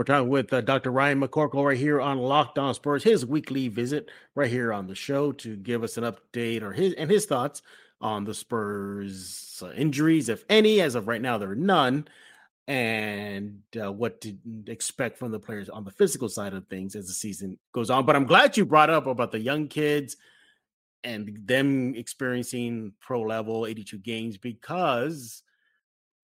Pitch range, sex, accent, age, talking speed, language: 105-140 Hz, male, American, 30-49, 190 wpm, English